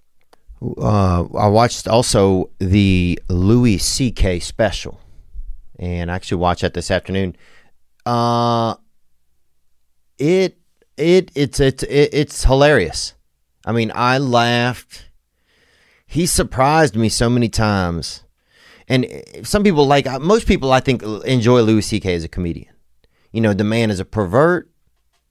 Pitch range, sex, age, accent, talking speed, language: 85-125 Hz, male, 30-49, American, 130 wpm, English